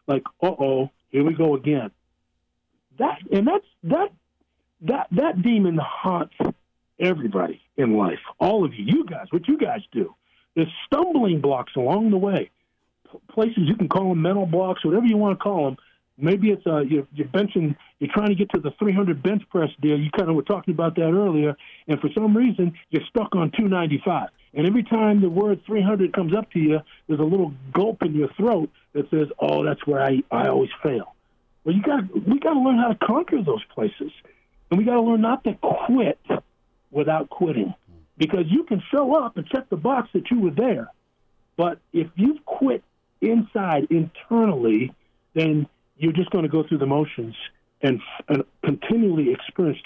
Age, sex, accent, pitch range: 50-69, male, American, 150-215 Hz